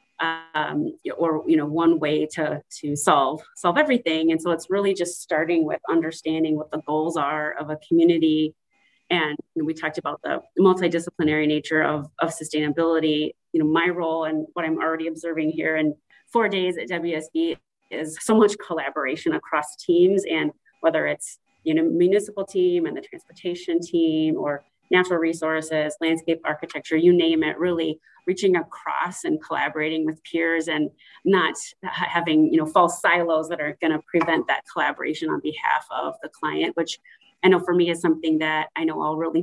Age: 30-49